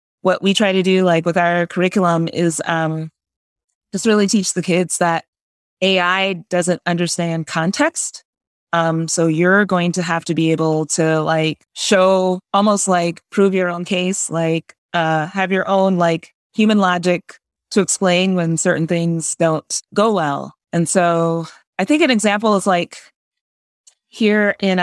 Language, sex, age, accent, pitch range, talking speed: English, female, 20-39, American, 165-190 Hz, 155 wpm